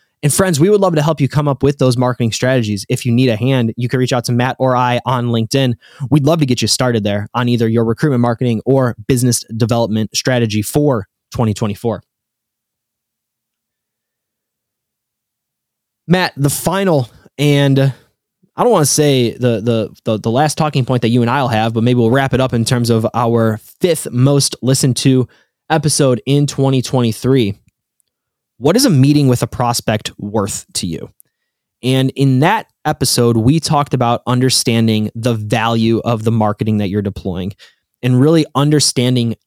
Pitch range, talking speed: 115-135 Hz, 175 wpm